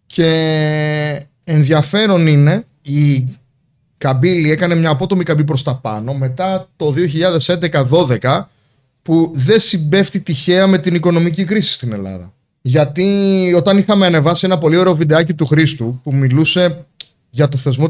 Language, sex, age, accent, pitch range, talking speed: Greek, male, 30-49, native, 130-175 Hz, 135 wpm